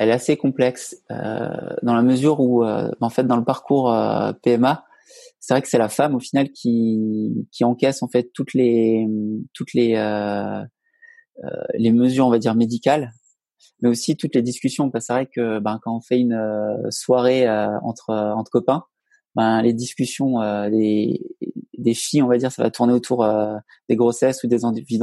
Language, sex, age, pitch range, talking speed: French, male, 20-39, 115-135 Hz, 200 wpm